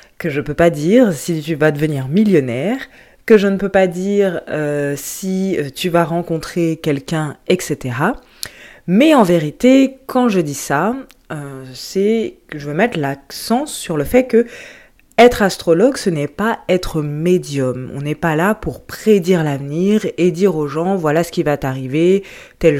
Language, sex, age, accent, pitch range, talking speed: French, female, 20-39, French, 145-190 Hz, 170 wpm